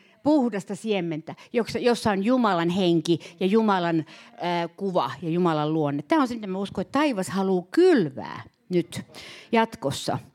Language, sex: Finnish, female